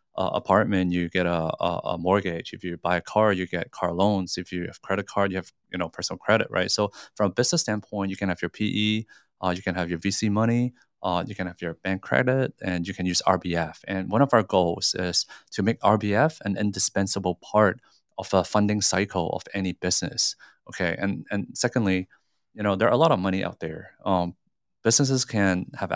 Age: 20-39